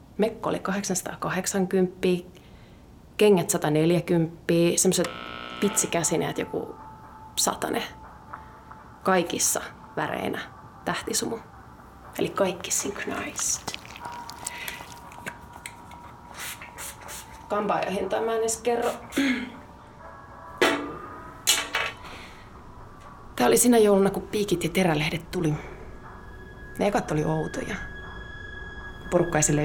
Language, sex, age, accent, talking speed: Finnish, female, 30-49, native, 70 wpm